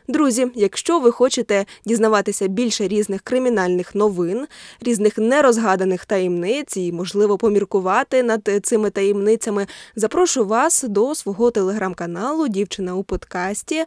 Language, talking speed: Ukrainian, 110 wpm